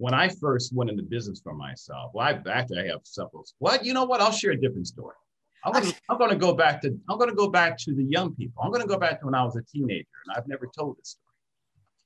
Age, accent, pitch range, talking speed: 50-69, American, 115-150 Hz, 245 wpm